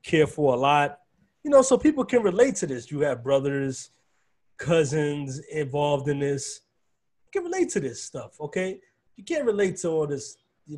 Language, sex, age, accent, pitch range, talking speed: English, male, 20-39, American, 140-205 Hz, 185 wpm